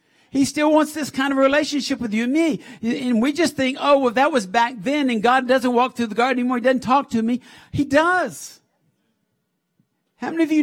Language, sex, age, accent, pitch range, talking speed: English, male, 50-69, American, 220-295 Hz, 225 wpm